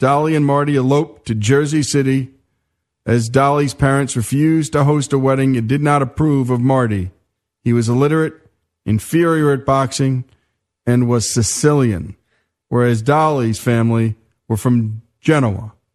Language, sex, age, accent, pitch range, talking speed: English, male, 40-59, American, 110-145 Hz, 135 wpm